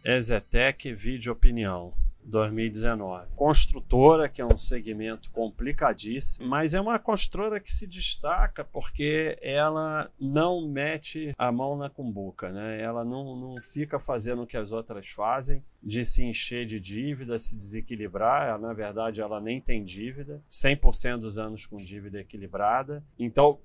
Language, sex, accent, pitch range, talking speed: Portuguese, male, Brazilian, 105-135 Hz, 140 wpm